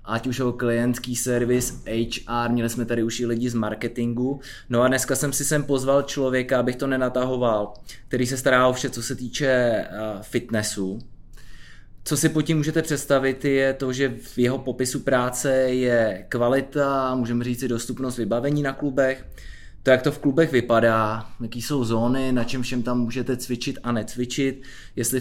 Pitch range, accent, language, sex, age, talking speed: 120-135 Hz, native, Czech, male, 20-39, 175 wpm